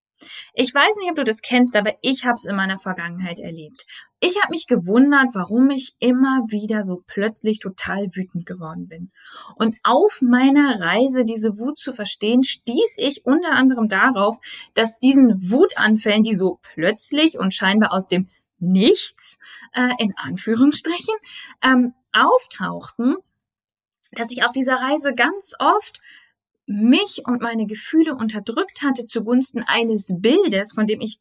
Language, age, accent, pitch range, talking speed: German, 20-39, German, 195-260 Hz, 150 wpm